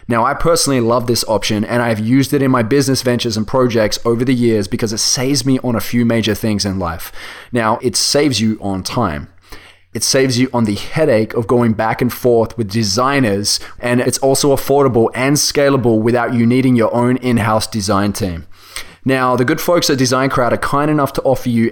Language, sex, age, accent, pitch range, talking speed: English, male, 20-39, Australian, 110-135 Hz, 205 wpm